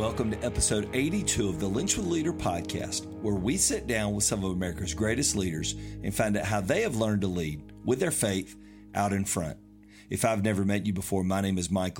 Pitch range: 95-115 Hz